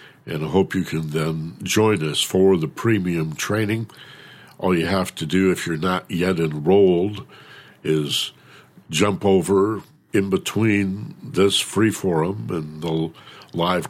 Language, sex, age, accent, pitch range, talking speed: English, male, 60-79, American, 85-110 Hz, 140 wpm